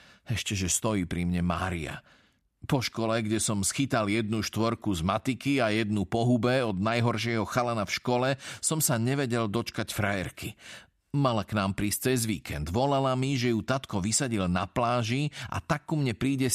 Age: 40-59